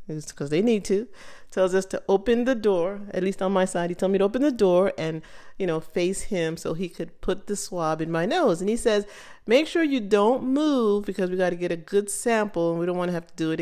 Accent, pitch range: American, 190-265 Hz